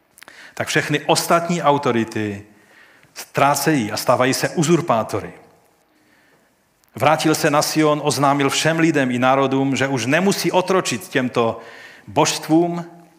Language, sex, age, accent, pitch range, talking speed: Czech, male, 40-59, native, 115-145 Hz, 110 wpm